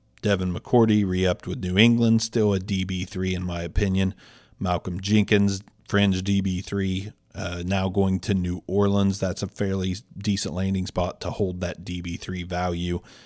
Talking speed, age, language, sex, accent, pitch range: 165 wpm, 40-59, English, male, American, 90-105 Hz